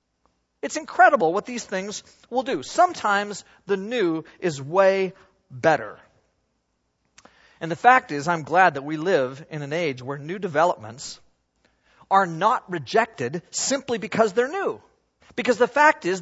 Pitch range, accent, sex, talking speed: 140-210 Hz, American, male, 145 wpm